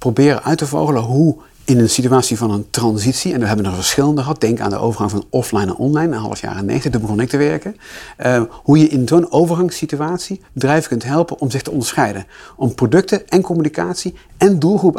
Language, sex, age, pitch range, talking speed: Dutch, male, 40-59, 115-160 Hz, 210 wpm